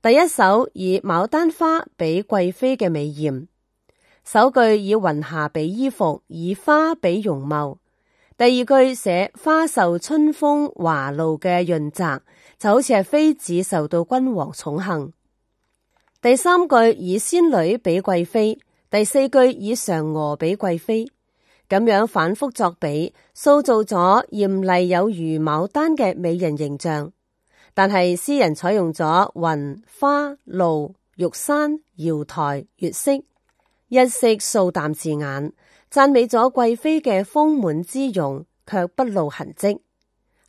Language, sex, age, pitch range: Chinese, female, 30-49, 165-255 Hz